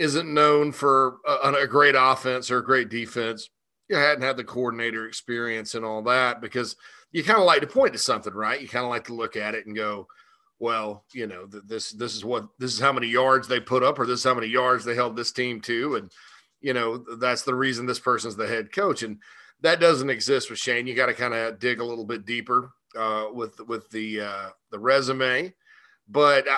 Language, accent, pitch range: English, American, 115-135 Hz